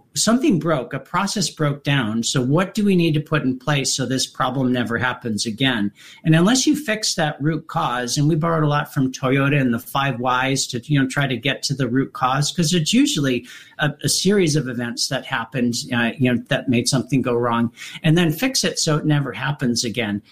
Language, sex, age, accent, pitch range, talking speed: English, male, 50-69, American, 130-160 Hz, 225 wpm